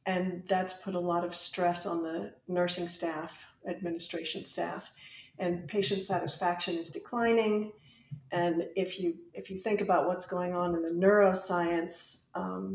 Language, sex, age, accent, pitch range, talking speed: English, female, 50-69, American, 170-195 Hz, 150 wpm